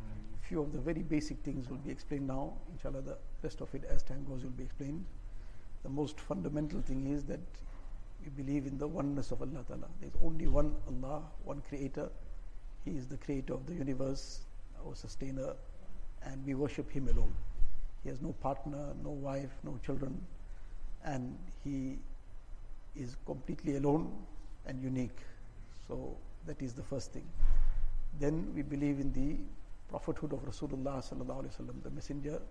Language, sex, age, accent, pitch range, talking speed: English, male, 60-79, Indian, 110-145 Hz, 160 wpm